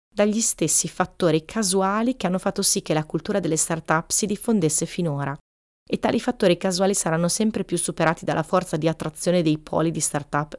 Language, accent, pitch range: Italian, native, 155-185 Hz